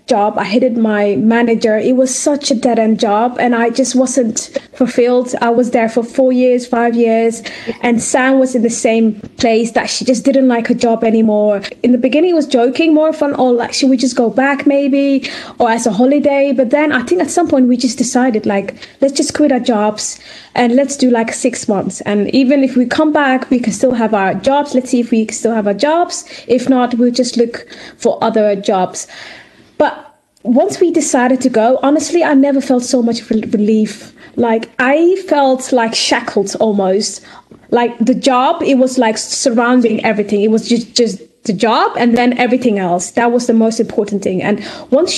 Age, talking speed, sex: 20-39, 205 wpm, female